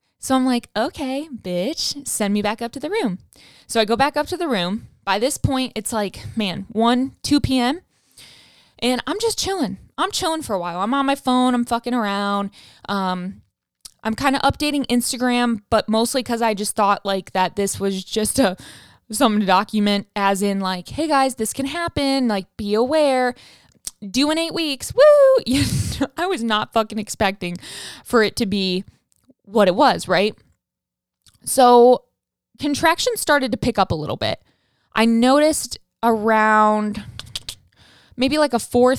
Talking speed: 170 wpm